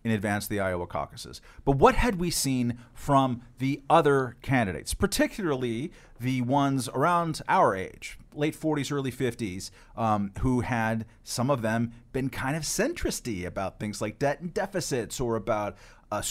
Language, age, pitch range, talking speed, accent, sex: English, 40-59, 110-155 Hz, 160 wpm, American, male